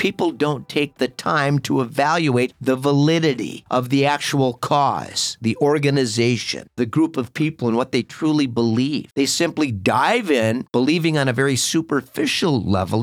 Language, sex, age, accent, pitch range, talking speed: English, male, 50-69, American, 115-145 Hz, 155 wpm